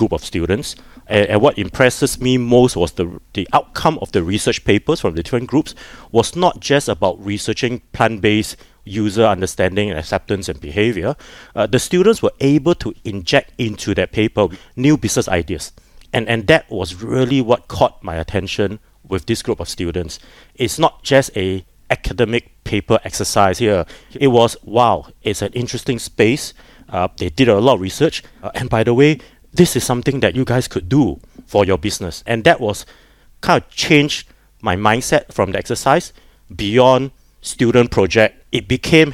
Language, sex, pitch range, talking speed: English, male, 100-130 Hz, 175 wpm